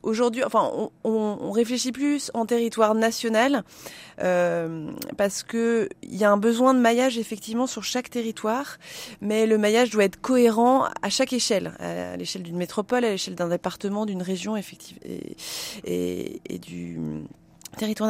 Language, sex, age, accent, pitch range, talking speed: French, female, 30-49, French, 195-245 Hz, 160 wpm